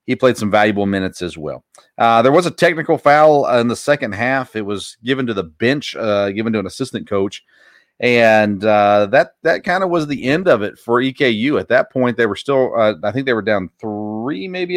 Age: 40-59